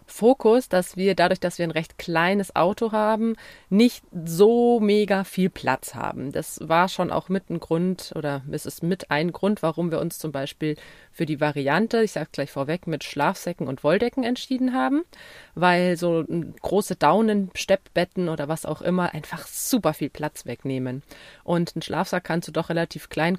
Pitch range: 160-205 Hz